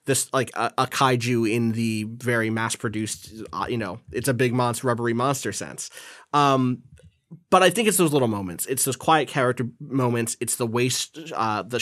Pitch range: 110-135 Hz